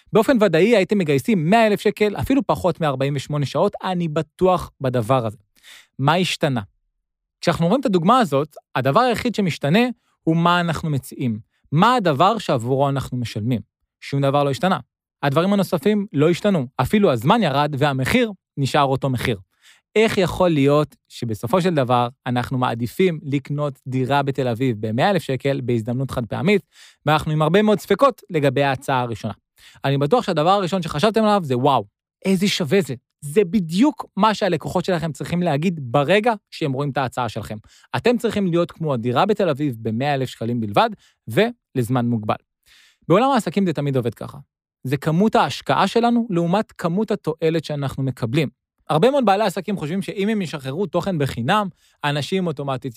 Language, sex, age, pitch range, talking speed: Hebrew, male, 20-39, 130-195 Hz, 150 wpm